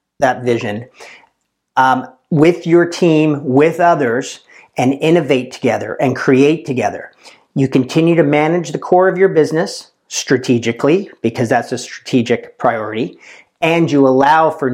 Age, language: 40-59, English